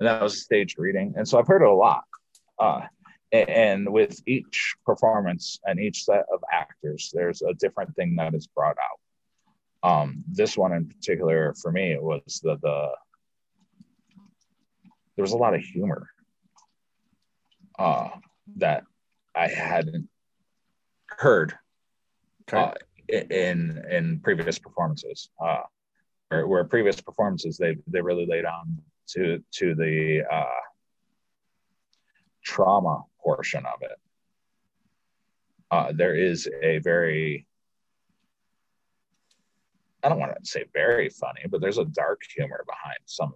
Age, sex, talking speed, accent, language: 30-49, male, 130 wpm, American, English